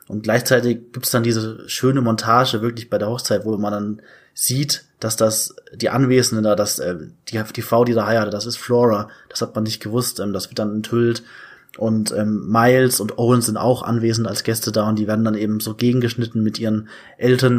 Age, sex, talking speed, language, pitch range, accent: 20-39, male, 210 wpm, German, 110-120 Hz, German